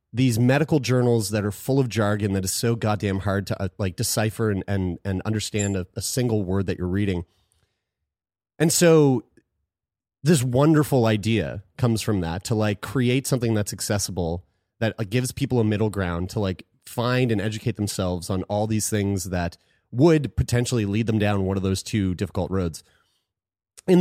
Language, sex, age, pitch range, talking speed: English, male, 30-49, 95-125 Hz, 175 wpm